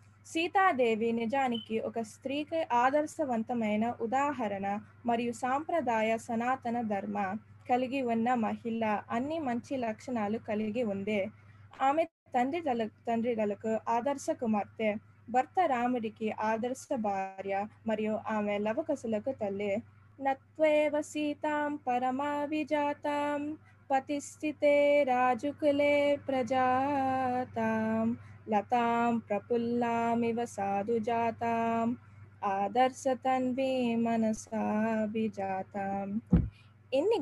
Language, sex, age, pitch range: Telugu, female, 20-39, 215-275 Hz